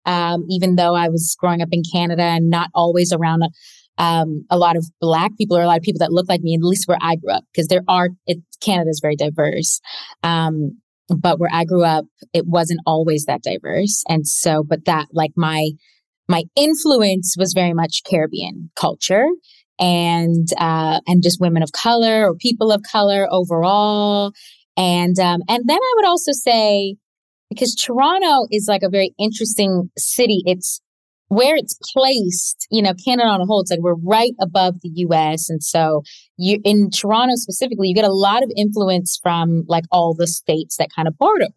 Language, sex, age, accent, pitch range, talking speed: English, female, 20-39, American, 170-210 Hz, 190 wpm